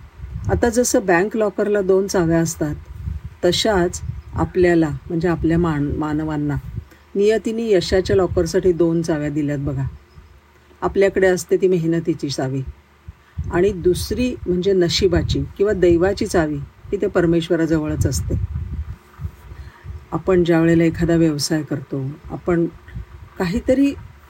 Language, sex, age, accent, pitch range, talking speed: Marathi, female, 50-69, native, 135-185 Hz, 105 wpm